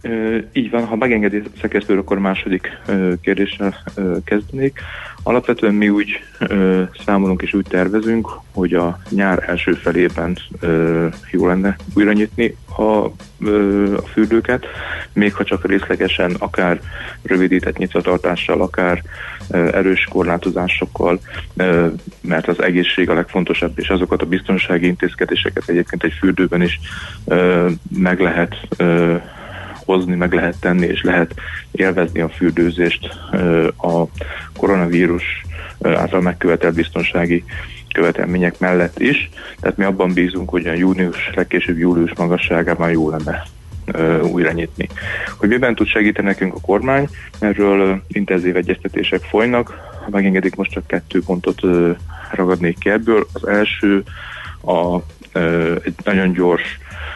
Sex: male